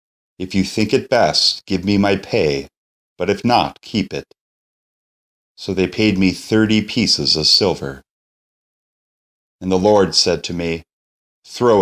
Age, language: 30-49, English